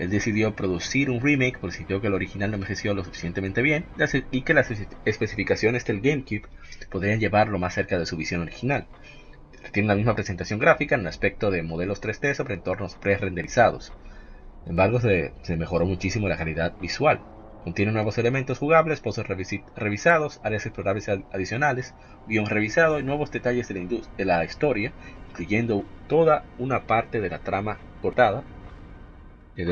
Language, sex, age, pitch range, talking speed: Spanish, male, 30-49, 90-125 Hz, 165 wpm